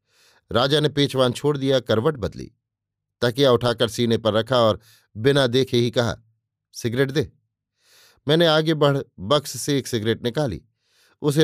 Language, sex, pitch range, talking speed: Hindi, male, 110-135 Hz, 145 wpm